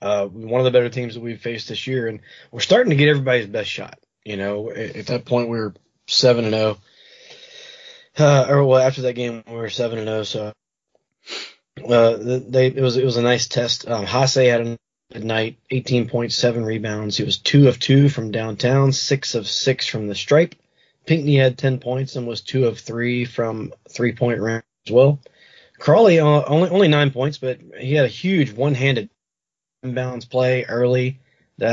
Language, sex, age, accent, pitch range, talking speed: English, male, 20-39, American, 115-135 Hz, 200 wpm